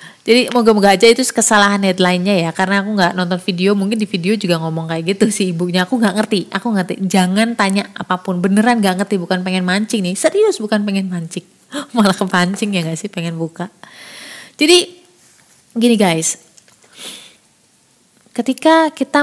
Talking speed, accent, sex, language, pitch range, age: 165 wpm, native, female, Indonesian, 185-240 Hz, 30-49